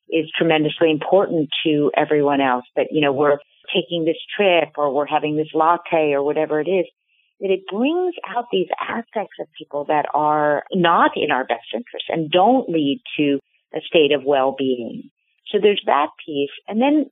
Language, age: English, 50-69